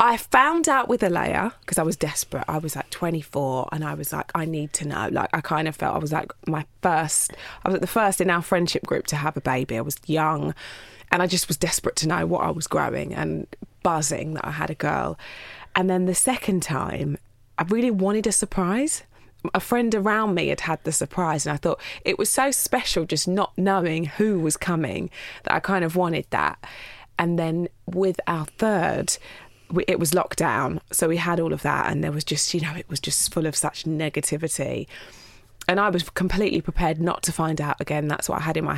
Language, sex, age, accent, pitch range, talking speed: English, female, 20-39, British, 155-210 Hz, 225 wpm